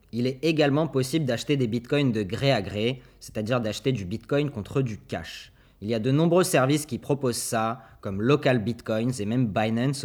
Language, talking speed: French, 195 wpm